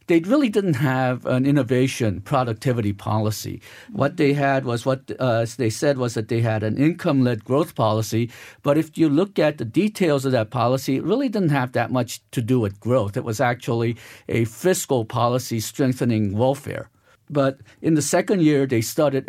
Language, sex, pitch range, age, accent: Korean, male, 120-145 Hz, 50-69, American